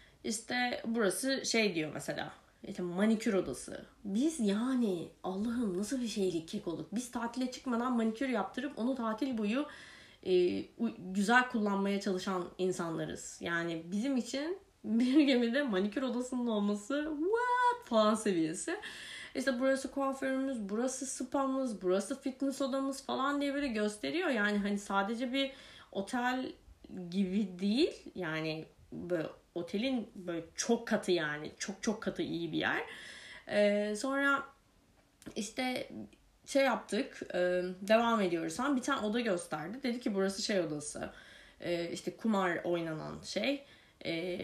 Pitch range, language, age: 180-265 Hz, Turkish, 30-49